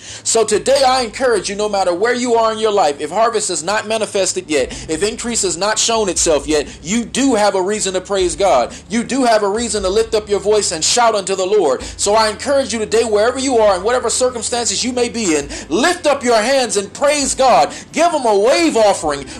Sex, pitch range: male, 200-265 Hz